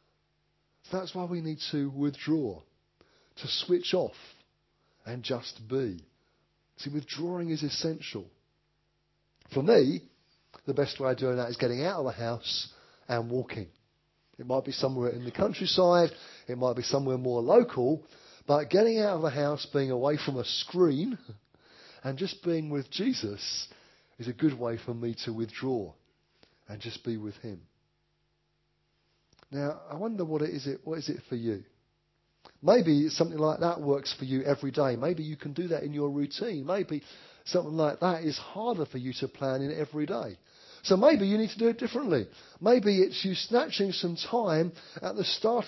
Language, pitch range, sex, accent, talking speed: English, 135-175 Hz, male, British, 170 wpm